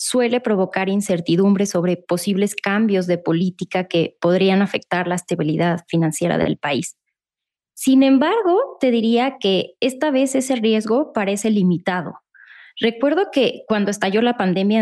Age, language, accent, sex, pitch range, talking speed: 20-39, Spanish, Mexican, female, 185-250 Hz, 135 wpm